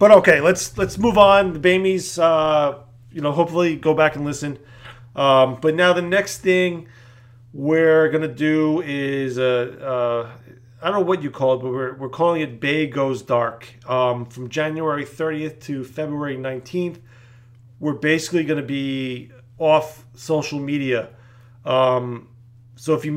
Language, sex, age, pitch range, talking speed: English, male, 40-59, 125-155 Hz, 165 wpm